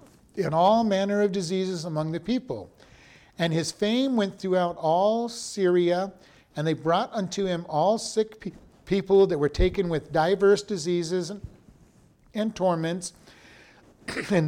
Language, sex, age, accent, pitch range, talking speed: English, male, 50-69, American, 150-200 Hz, 135 wpm